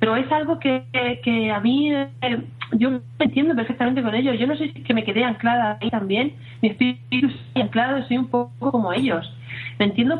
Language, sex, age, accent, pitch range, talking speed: Spanish, female, 30-49, Spanish, 195-255 Hz, 210 wpm